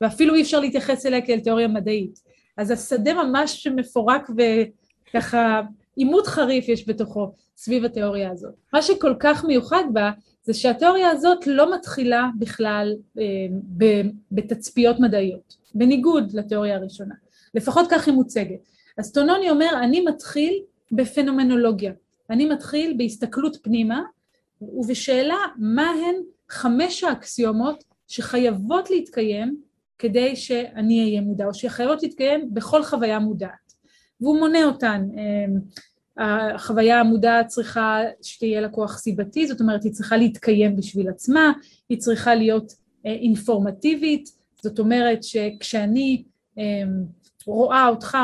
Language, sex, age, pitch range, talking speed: Hebrew, female, 30-49, 215-280 Hz, 115 wpm